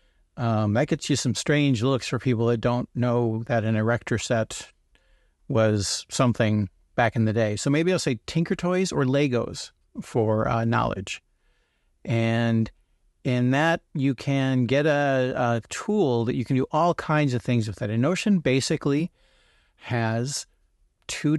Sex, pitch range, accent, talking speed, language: male, 115-150 Hz, American, 160 wpm, English